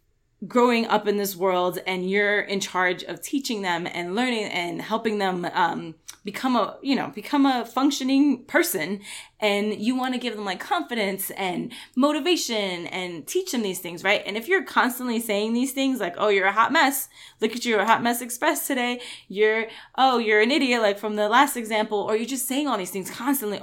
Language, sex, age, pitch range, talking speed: English, female, 10-29, 195-250 Hz, 210 wpm